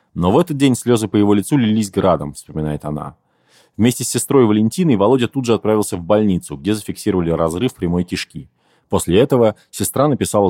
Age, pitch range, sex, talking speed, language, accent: 30-49, 90-115 Hz, male, 175 wpm, Russian, native